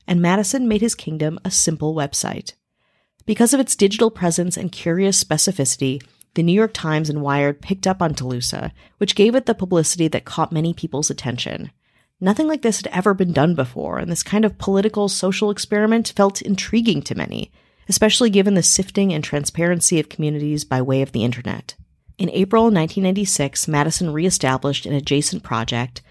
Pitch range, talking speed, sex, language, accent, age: 150-195 Hz, 170 wpm, female, English, American, 30-49